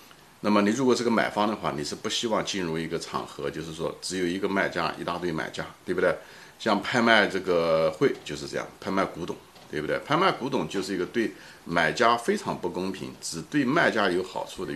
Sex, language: male, Chinese